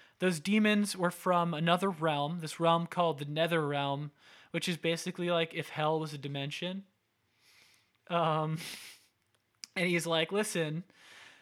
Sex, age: male, 20-39